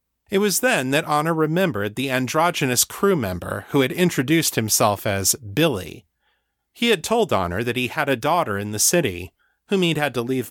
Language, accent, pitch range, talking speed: English, American, 110-155 Hz, 190 wpm